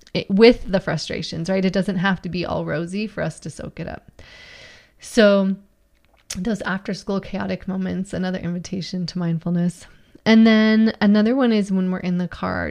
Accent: American